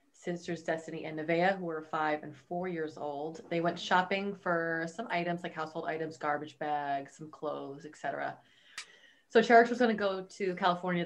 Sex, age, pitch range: female, 30-49, 155-185 Hz